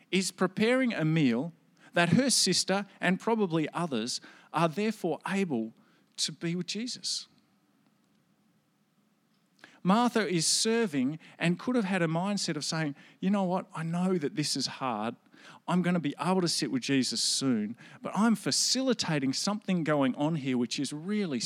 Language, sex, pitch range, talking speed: English, male, 160-215 Hz, 160 wpm